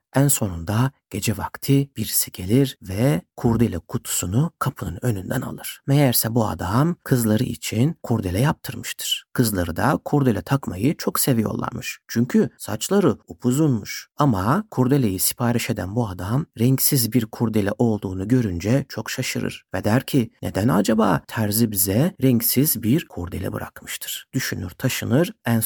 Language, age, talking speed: Turkish, 60-79, 130 wpm